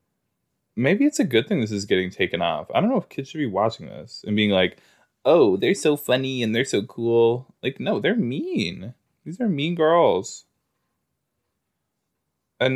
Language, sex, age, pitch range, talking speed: English, male, 20-39, 100-160 Hz, 185 wpm